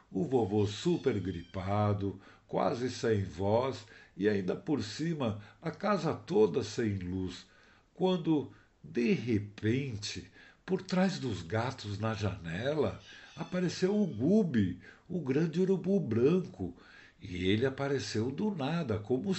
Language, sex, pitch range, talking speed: Portuguese, male, 100-150 Hz, 120 wpm